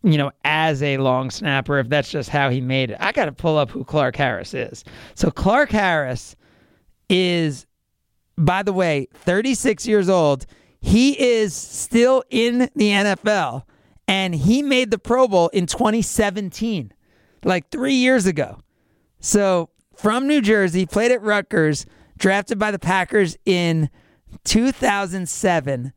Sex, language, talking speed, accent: male, English, 145 wpm, American